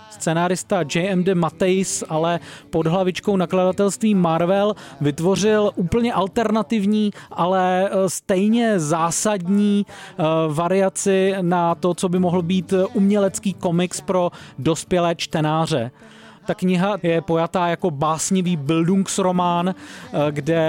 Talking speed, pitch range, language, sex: 100 wpm, 165-195 Hz, Czech, male